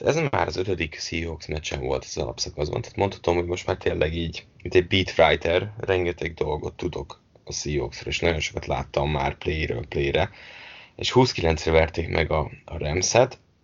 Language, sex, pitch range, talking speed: English, male, 80-95 Hz, 170 wpm